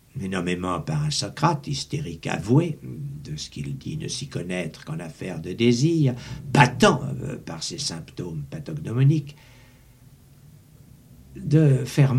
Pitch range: 120-150 Hz